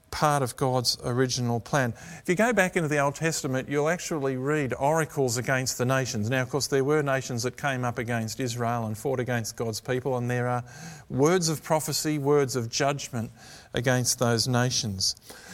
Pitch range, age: 120-150 Hz, 50-69